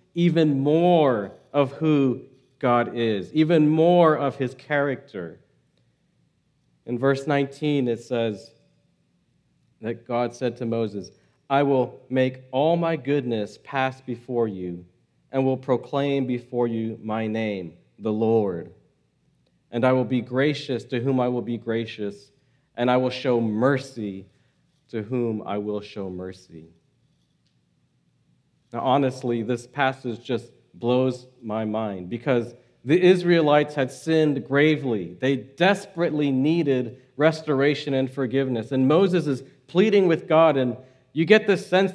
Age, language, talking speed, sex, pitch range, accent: 40-59, English, 130 wpm, male, 120-170 Hz, American